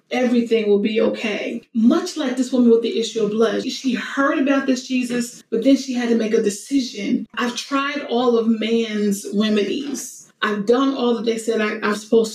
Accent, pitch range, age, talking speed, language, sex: American, 220-260 Hz, 30-49, 195 wpm, English, female